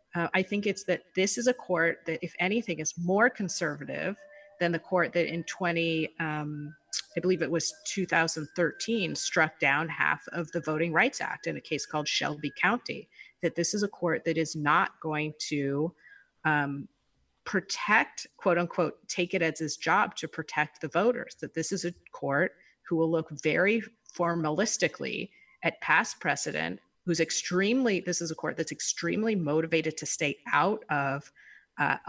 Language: English